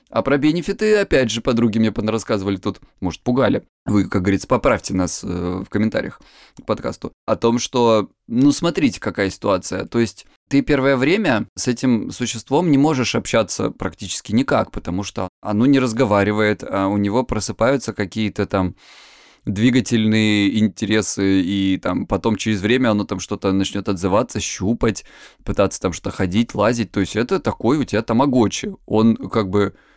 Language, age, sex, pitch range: Russian, 20-39, male, 95-115 Hz